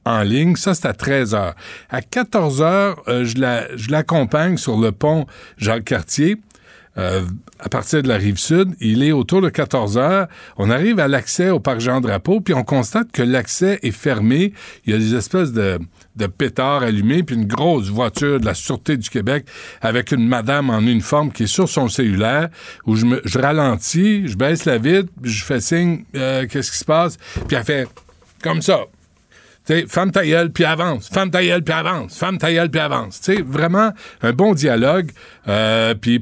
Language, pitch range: French, 120-175 Hz